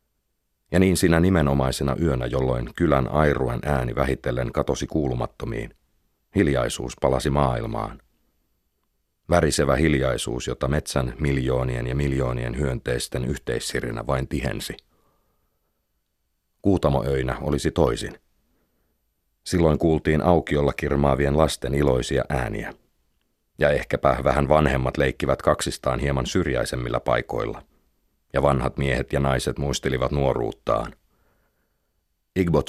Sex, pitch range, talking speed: male, 65-80 Hz, 95 wpm